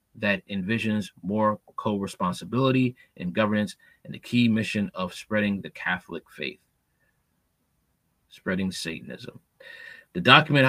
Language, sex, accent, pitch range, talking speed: English, male, American, 100-125 Hz, 105 wpm